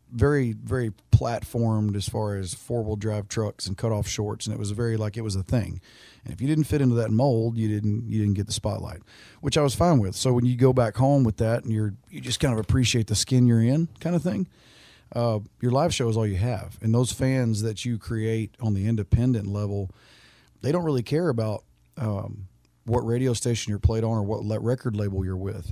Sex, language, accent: male, English, American